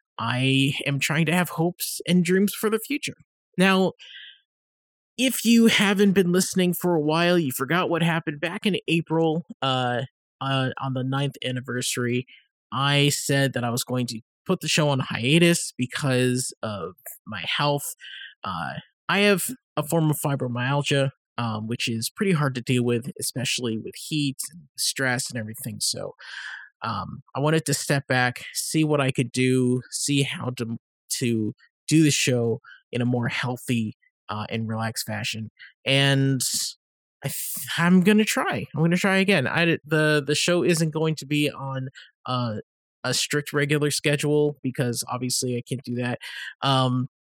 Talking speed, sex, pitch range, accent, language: 160 wpm, male, 125-160 Hz, American, English